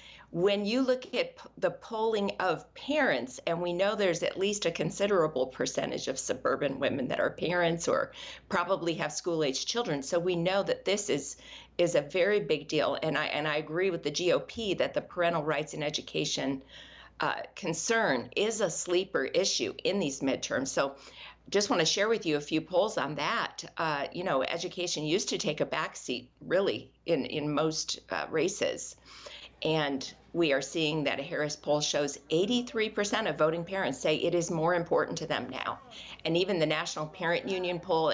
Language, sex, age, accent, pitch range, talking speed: English, female, 50-69, American, 155-200 Hz, 185 wpm